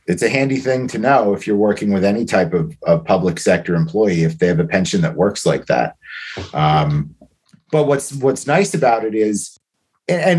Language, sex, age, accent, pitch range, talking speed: English, male, 30-49, American, 105-155 Hz, 210 wpm